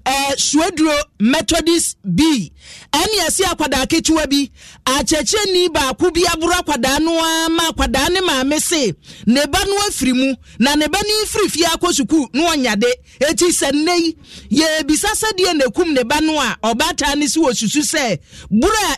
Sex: male